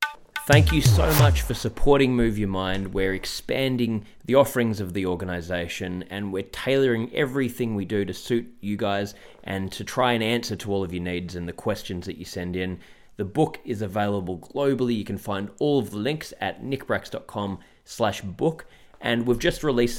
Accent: Australian